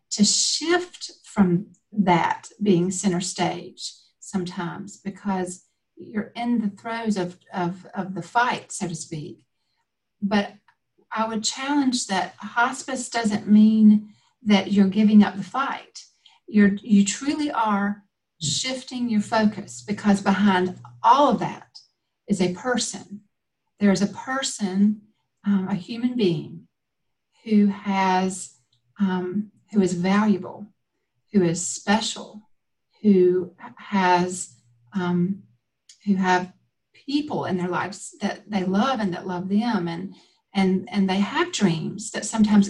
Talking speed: 130 wpm